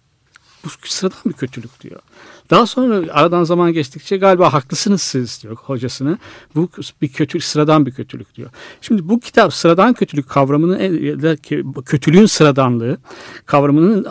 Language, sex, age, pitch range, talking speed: Turkish, male, 60-79, 135-175 Hz, 130 wpm